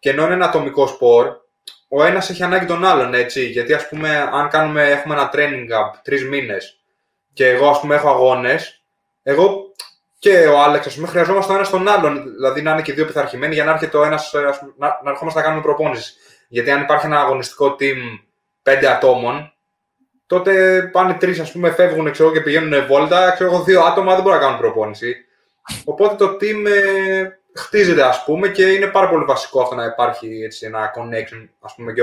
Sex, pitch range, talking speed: male, 125-185 Hz, 200 wpm